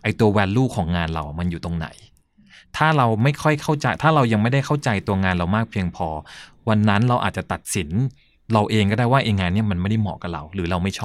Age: 20-39